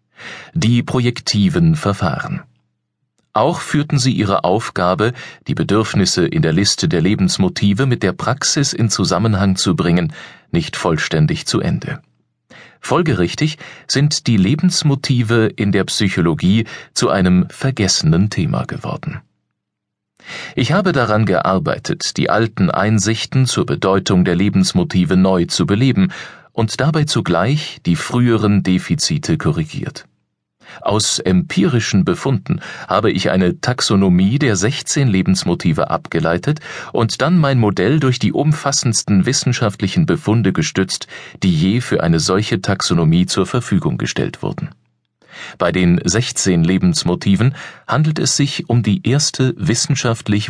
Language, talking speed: German, 120 wpm